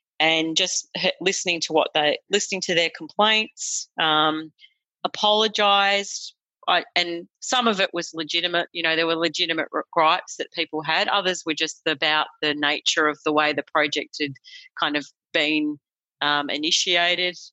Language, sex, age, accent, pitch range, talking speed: English, female, 40-59, Australian, 150-175 Hz, 150 wpm